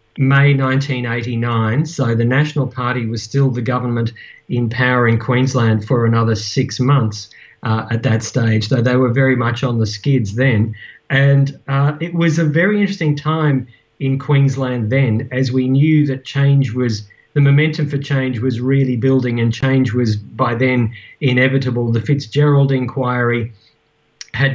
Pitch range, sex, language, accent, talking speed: 120-140 Hz, male, English, Australian, 160 wpm